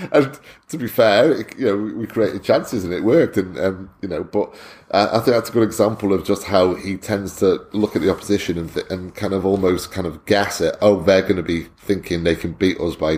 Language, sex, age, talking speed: English, male, 30-49, 250 wpm